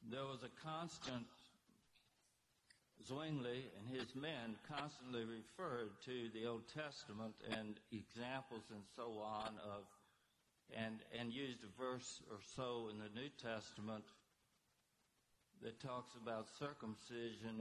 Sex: male